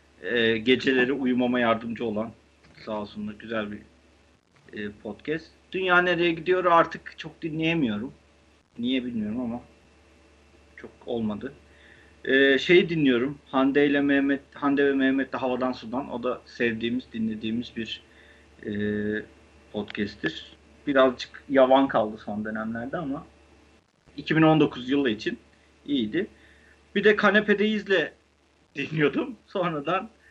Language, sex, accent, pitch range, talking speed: Turkish, male, native, 105-145 Hz, 105 wpm